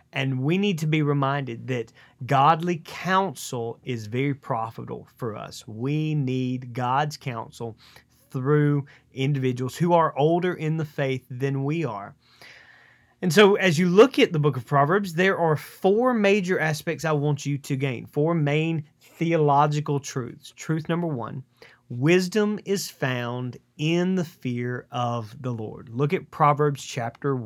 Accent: American